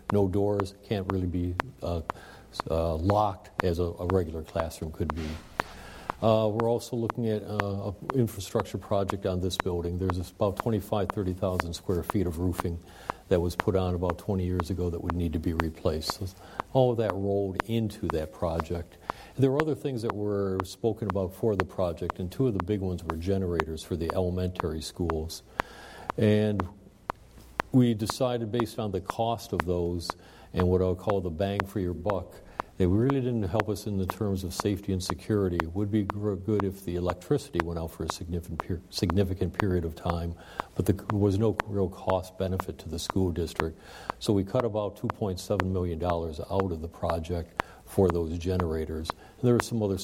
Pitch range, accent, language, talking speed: 90-105 Hz, American, English, 185 wpm